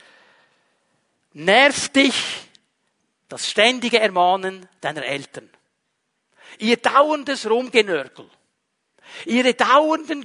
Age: 50-69